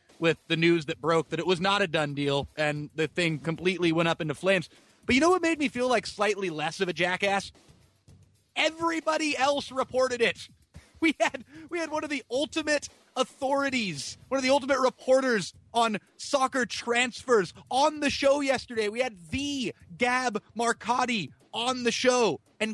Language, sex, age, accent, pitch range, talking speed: English, male, 30-49, American, 180-245 Hz, 175 wpm